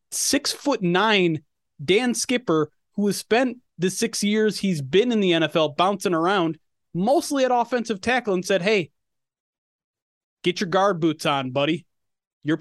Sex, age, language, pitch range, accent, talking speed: male, 30-49, English, 160-215 Hz, American, 150 wpm